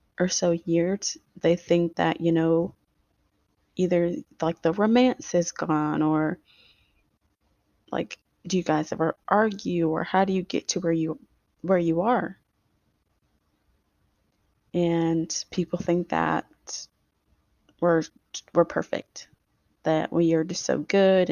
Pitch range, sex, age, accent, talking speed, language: 160-185 Hz, female, 20-39, American, 125 wpm, English